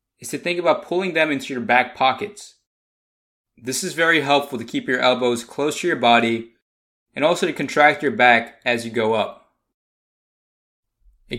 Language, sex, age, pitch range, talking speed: English, male, 20-39, 120-155 Hz, 175 wpm